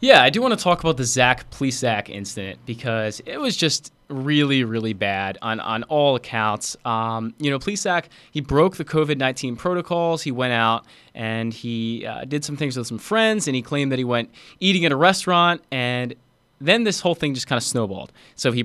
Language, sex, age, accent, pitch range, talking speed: English, male, 20-39, American, 120-155 Hz, 205 wpm